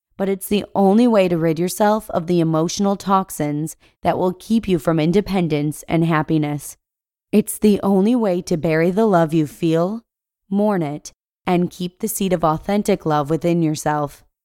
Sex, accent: female, American